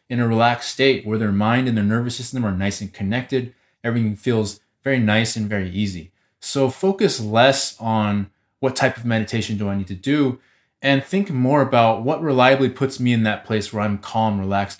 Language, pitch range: English, 100-130 Hz